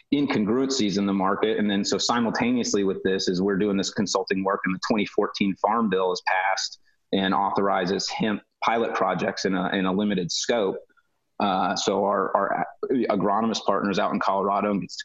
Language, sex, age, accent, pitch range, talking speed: English, male, 30-49, American, 95-105 Hz, 175 wpm